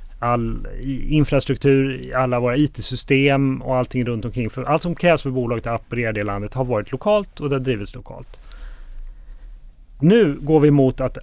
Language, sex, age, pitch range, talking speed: Swedish, male, 30-49, 115-145 Hz, 170 wpm